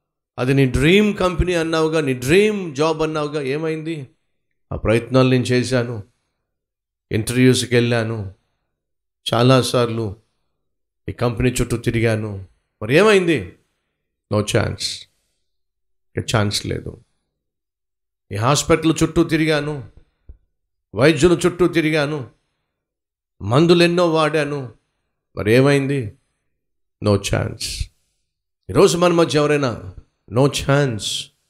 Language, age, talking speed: Telugu, 50-69, 90 wpm